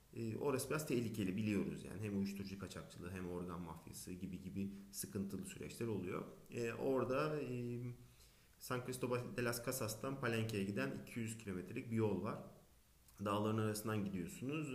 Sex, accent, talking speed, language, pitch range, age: male, native, 140 wpm, Turkish, 100-130 Hz, 40-59